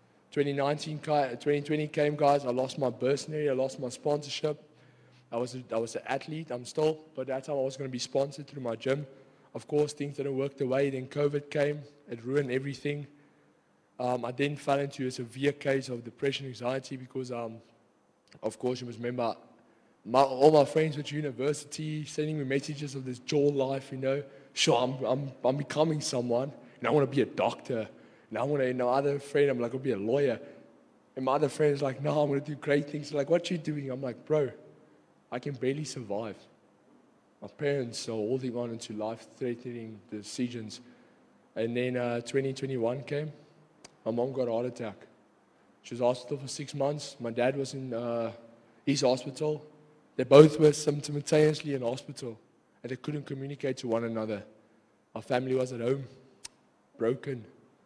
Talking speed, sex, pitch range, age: 195 wpm, male, 125-145 Hz, 20-39